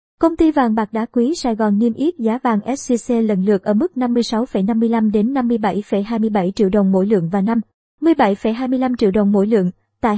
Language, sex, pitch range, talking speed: Vietnamese, male, 215-255 Hz, 190 wpm